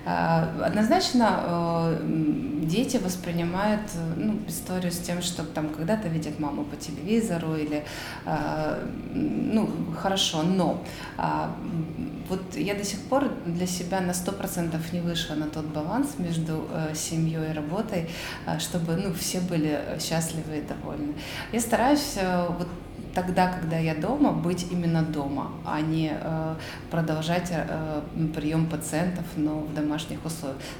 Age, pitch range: 20-39, 160-190 Hz